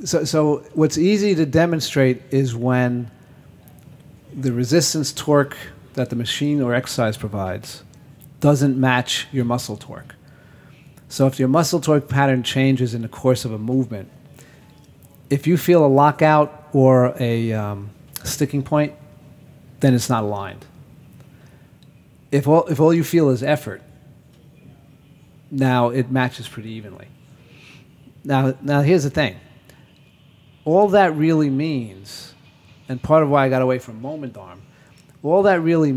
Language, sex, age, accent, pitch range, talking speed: English, male, 40-59, American, 125-150 Hz, 140 wpm